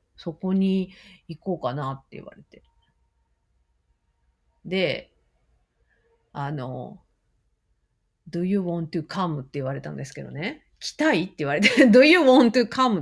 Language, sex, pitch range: Japanese, female, 155-205 Hz